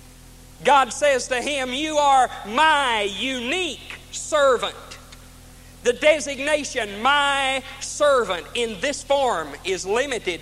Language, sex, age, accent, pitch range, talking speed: English, male, 50-69, American, 215-285 Hz, 105 wpm